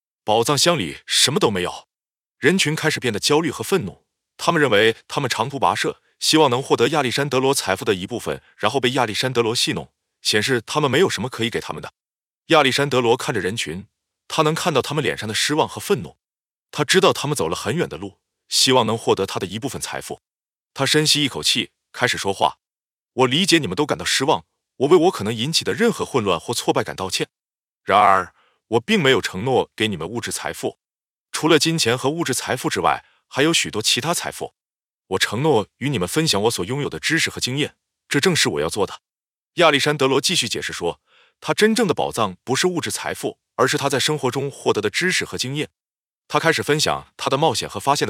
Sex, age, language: male, 30-49, Chinese